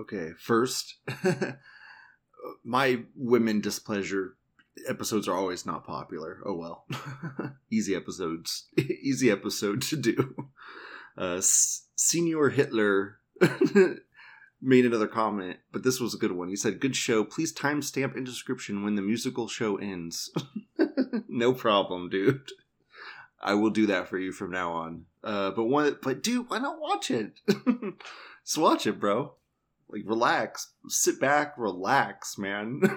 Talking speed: 140 wpm